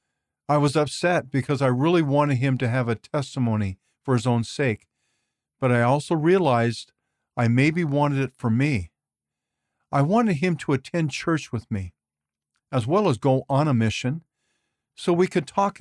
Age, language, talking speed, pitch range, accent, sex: 50-69, English, 170 wpm, 120-155 Hz, American, male